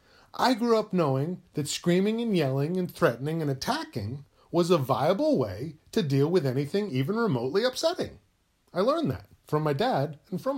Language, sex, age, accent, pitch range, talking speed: English, male, 40-59, American, 105-175 Hz, 175 wpm